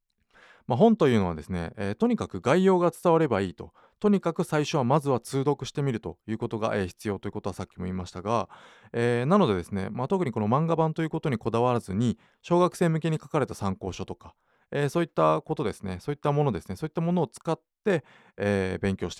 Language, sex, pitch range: Japanese, male, 95-140 Hz